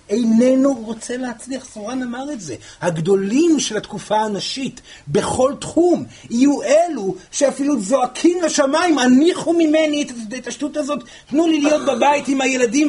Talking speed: 135 wpm